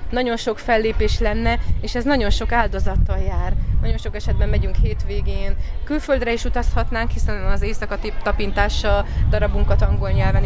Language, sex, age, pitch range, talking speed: Hungarian, female, 30-49, 180-215 Hz, 145 wpm